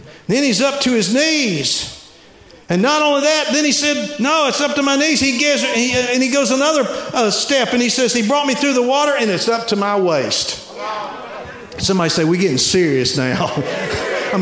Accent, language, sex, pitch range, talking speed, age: American, English, male, 175-235 Hz, 210 wpm, 60-79